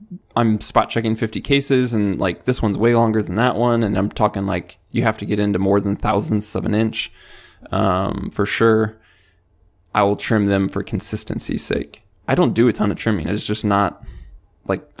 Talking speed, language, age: 200 wpm, English, 20-39